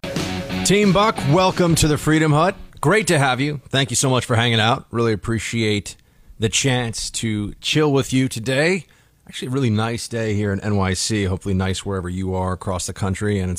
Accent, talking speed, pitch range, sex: American, 200 wpm, 105-145 Hz, male